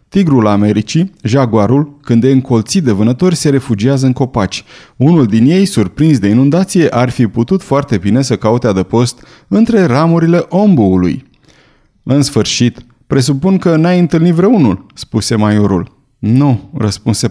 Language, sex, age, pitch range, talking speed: Romanian, male, 30-49, 110-155 Hz, 140 wpm